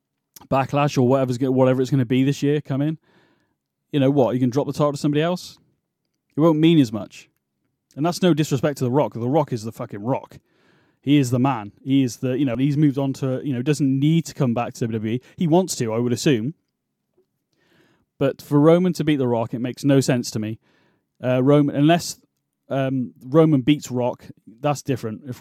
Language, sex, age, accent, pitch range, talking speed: English, male, 30-49, British, 125-145 Hz, 220 wpm